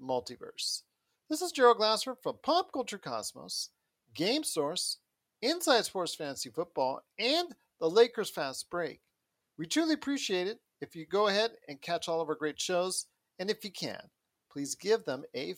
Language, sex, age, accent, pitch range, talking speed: English, male, 50-69, American, 175-245 Hz, 165 wpm